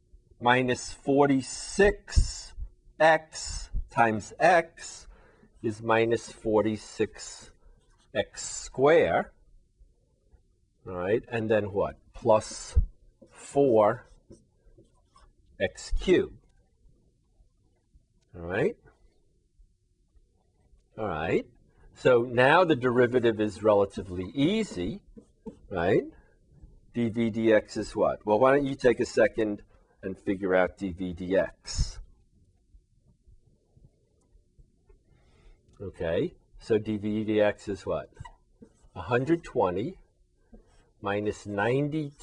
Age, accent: 50-69, American